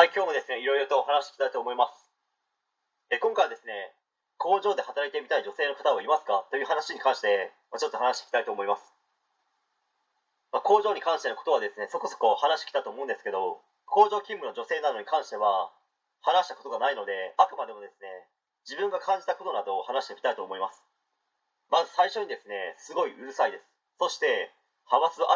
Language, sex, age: Japanese, male, 30-49